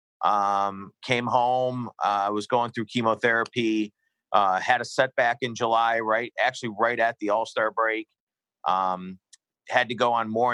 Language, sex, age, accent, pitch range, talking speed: English, male, 40-59, American, 105-125 Hz, 160 wpm